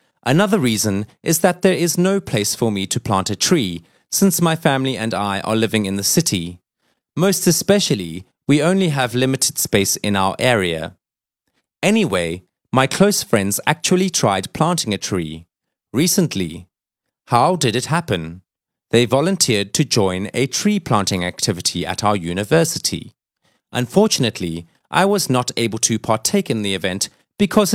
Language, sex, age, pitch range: Chinese, male, 30-49, 105-160 Hz